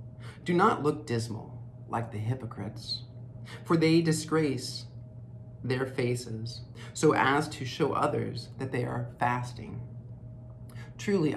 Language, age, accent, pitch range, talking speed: English, 40-59, American, 115-135 Hz, 115 wpm